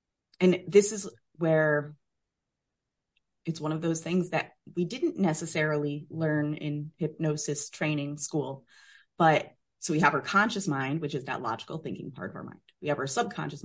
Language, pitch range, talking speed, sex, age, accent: English, 140-165 Hz, 165 wpm, female, 30-49, American